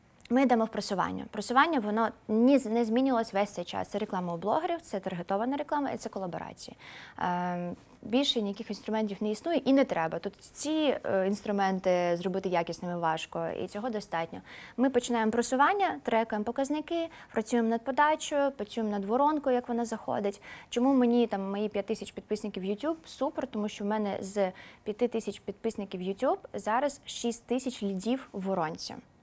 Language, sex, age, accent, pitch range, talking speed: Ukrainian, female, 20-39, native, 200-250 Hz, 155 wpm